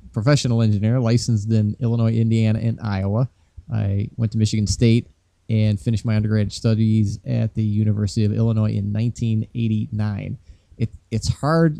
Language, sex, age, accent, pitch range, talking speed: English, male, 30-49, American, 100-115 Hz, 140 wpm